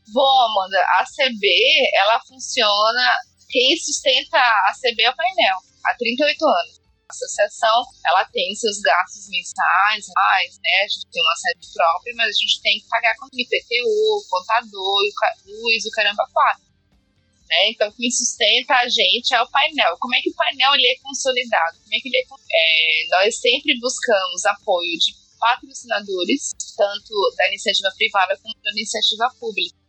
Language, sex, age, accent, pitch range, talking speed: Portuguese, female, 20-39, Brazilian, 205-300 Hz, 170 wpm